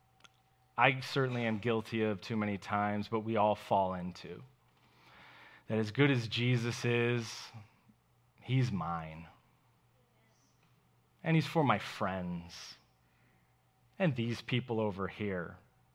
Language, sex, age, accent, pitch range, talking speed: English, male, 30-49, American, 105-130 Hz, 115 wpm